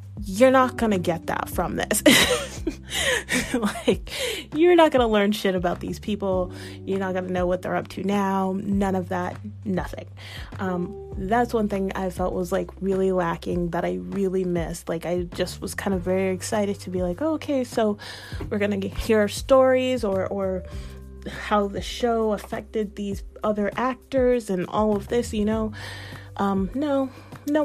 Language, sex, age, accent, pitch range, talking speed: English, female, 30-49, American, 175-210 Hz, 175 wpm